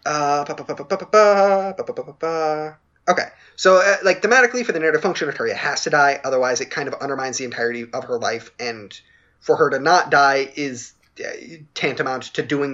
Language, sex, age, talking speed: English, male, 20-39, 160 wpm